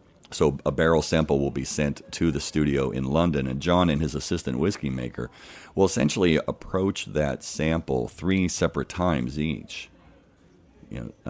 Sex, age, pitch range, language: male, 50-69, 65-80 Hz, English